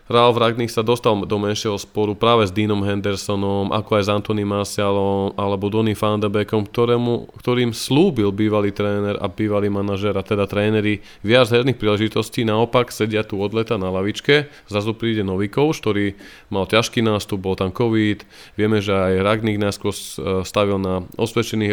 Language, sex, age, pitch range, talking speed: Slovak, male, 20-39, 100-115 Hz, 160 wpm